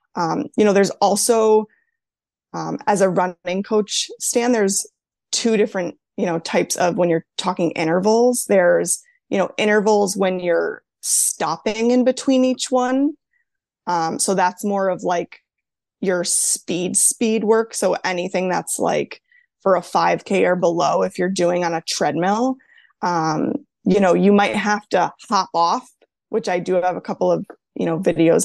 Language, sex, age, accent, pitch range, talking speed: English, female, 20-39, American, 175-220 Hz, 160 wpm